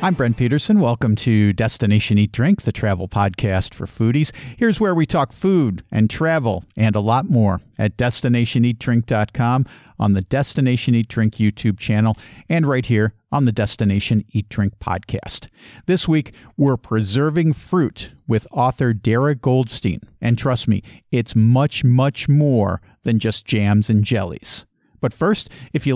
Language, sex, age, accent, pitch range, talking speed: English, male, 50-69, American, 110-140 Hz, 155 wpm